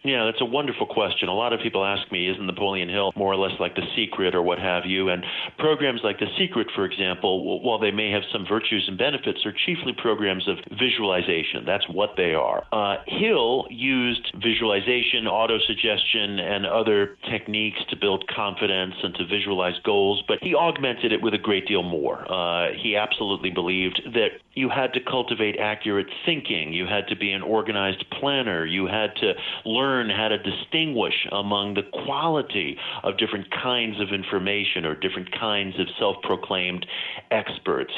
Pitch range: 95-115 Hz